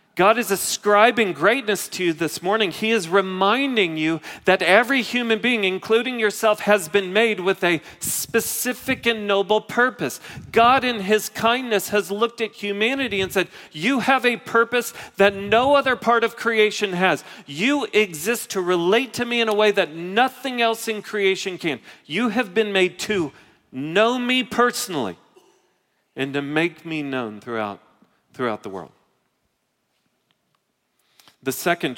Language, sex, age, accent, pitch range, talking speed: English, male, 40-59, American, 140-215 Hz, 155 wpm